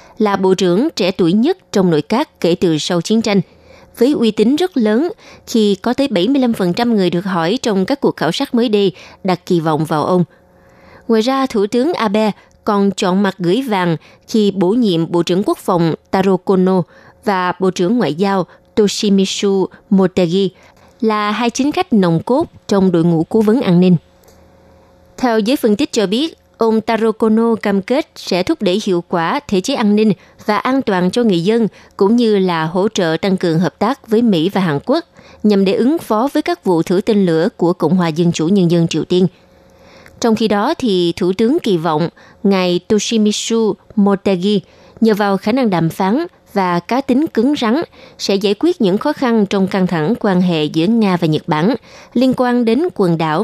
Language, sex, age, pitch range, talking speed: Vietnamese, female, 20-39, 180-230 Hz, 200 wpm